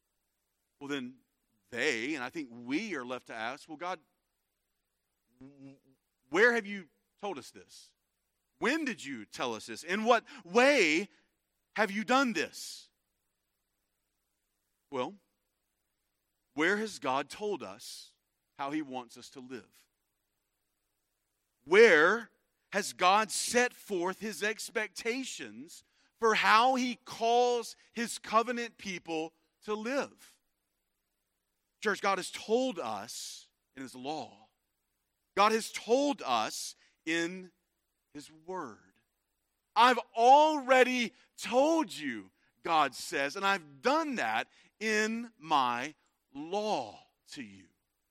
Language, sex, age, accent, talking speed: English, male, 40-59, American, 110 wpm